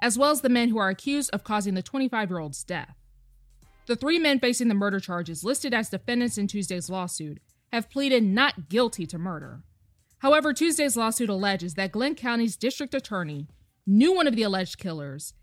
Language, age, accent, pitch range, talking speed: English, 20-39, American, 175-255 Hz, 185 wpm